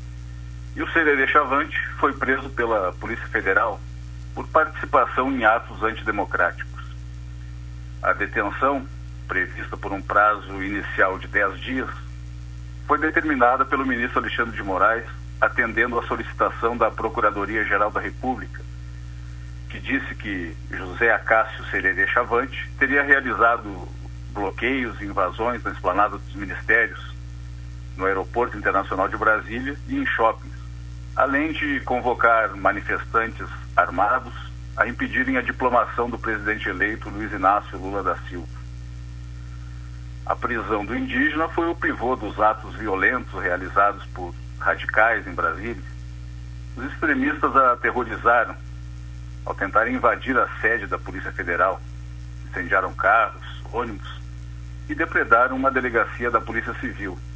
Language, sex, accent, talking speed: Portuguese, male, Brazilian, 120 wpm